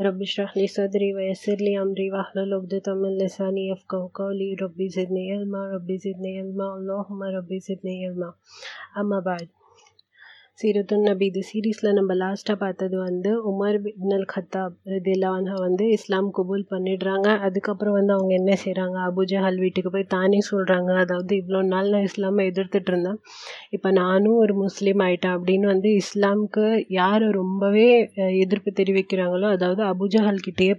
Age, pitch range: 30-49, 190-205 Hz